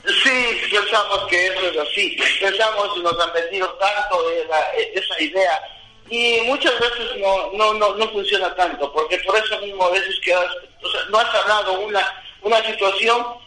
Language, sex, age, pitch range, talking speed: Spanish, male, 50-69, 185-245 Hz, 185 wpm